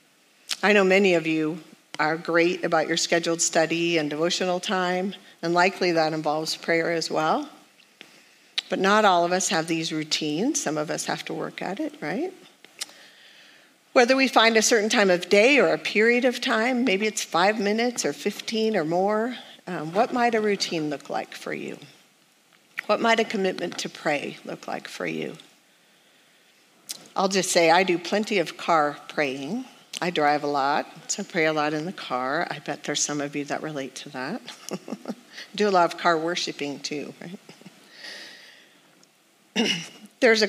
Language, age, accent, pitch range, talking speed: English, 50-69, American, 160-210 Hz, 175 wpm